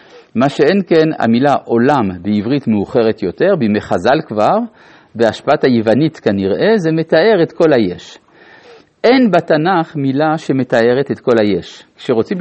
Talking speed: 130 wpm